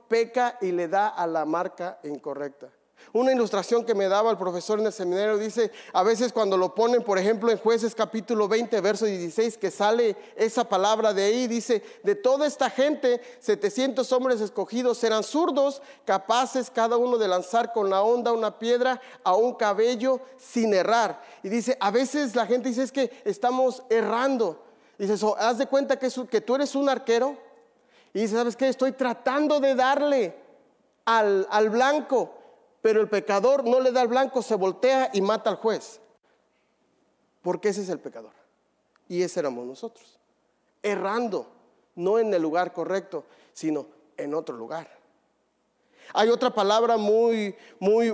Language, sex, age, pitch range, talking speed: English, male, 40-59, 210-255 Hz, 165 wpm